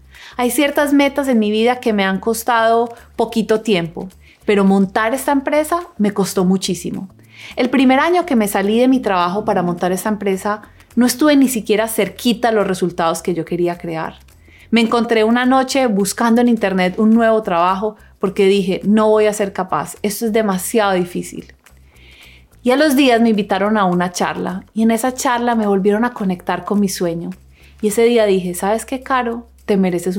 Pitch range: 190-255 Hz